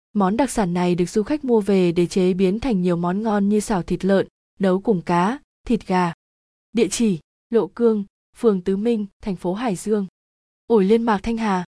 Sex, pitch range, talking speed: female, 185-225 Hz, 210 wpm